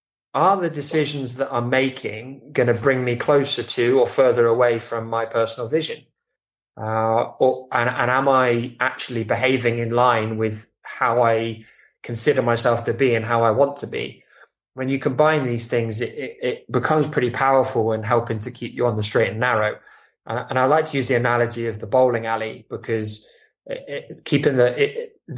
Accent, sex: British, male